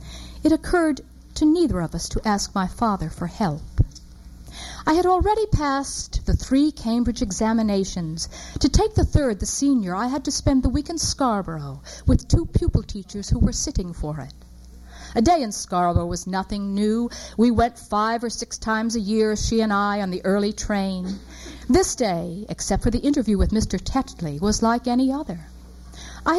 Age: 50-69